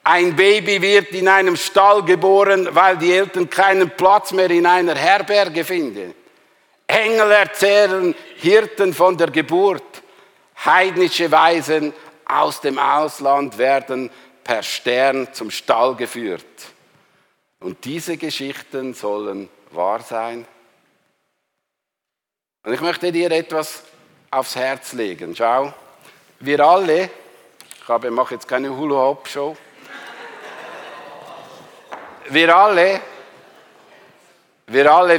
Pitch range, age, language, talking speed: 135-195 Hz, 60-79, German, 100 wpm